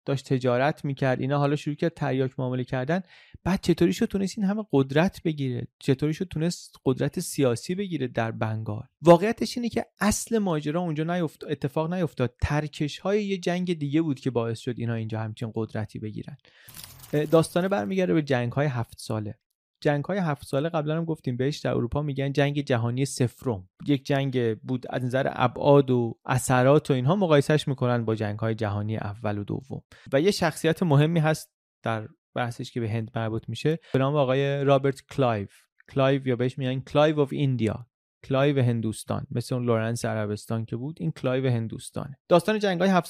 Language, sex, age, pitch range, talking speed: Persian, male, 30-49, 120-155 Hz, 175 wpm